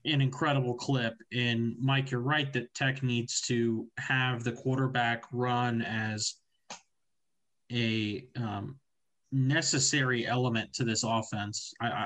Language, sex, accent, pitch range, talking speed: English, male, American, 115-130 Hz, 120 wpm